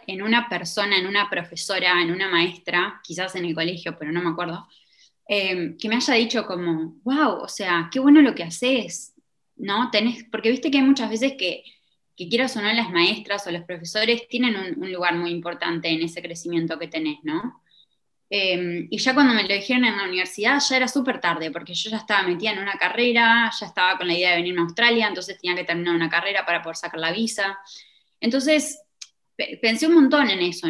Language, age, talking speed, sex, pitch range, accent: Spanish, 20-39, 215 wpm, female, 180-245 Hz, Argentinian